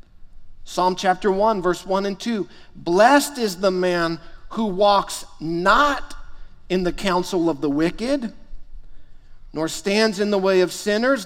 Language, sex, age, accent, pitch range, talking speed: English, male, 50-69, American, 120-180 Hz, 145 wpm